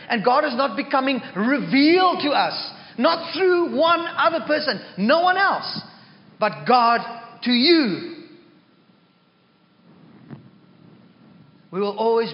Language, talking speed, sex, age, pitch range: English, 110 wpm, male, 40-59, 190-275 Hz